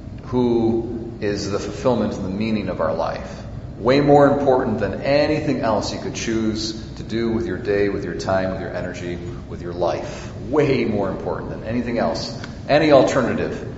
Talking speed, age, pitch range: 180 wpm, 40-59, 100-125 Hz